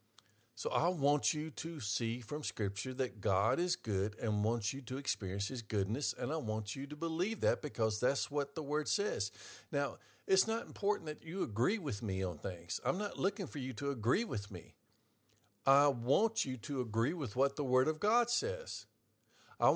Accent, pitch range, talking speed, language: American, 110-155 Hz, 195 wpm, English